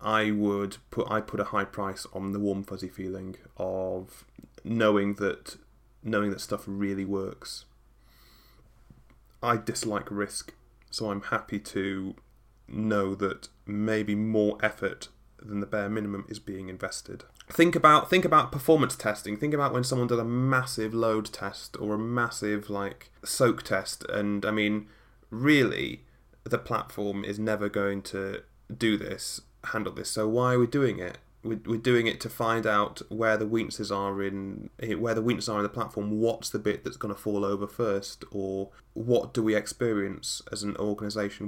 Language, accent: English, British